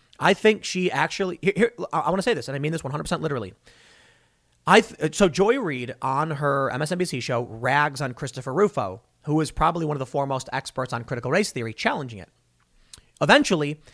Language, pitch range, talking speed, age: English, 130-190 Hz, 190 wpm, 30-49